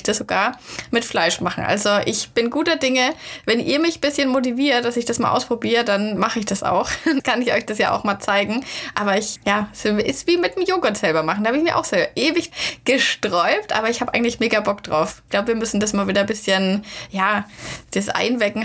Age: 20-39